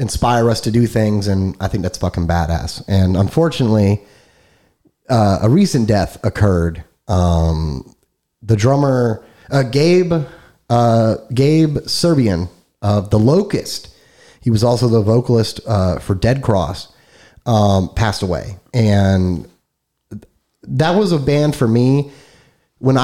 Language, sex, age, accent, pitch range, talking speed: English, male, 30-49, American, 100-130 Hz, 130 wpm